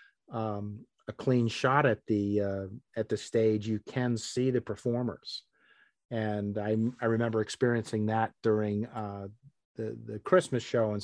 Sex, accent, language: male, American, English